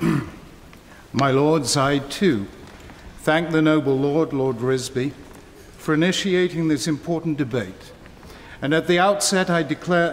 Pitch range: 130-160 Hz